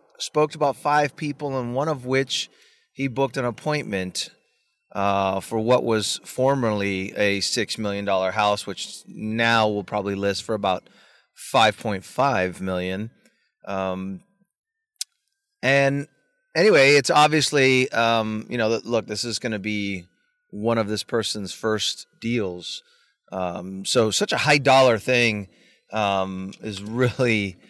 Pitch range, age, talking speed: 100-130 Hz, 30-49, 130 wpm